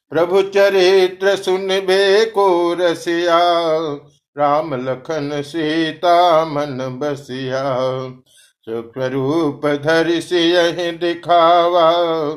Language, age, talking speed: Hindi, 50-69, 75 wpm